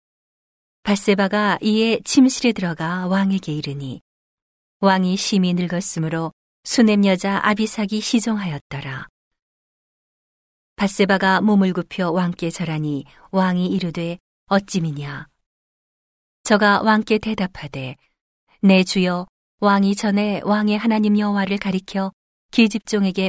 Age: 40-59